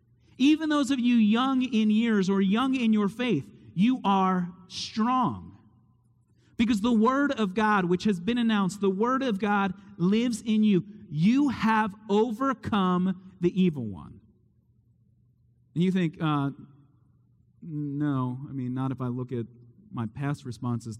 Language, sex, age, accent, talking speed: English, male, 40-59, American, 150 wpm